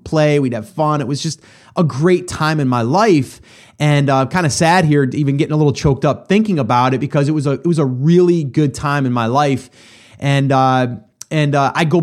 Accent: American